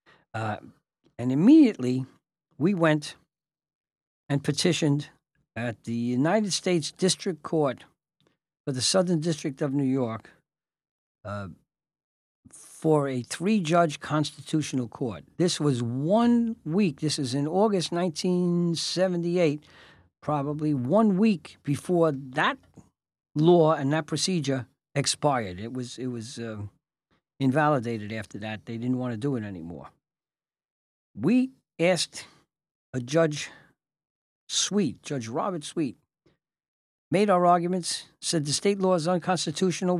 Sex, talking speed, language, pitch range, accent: male, 115 wpm, English, 130-180 Hz, American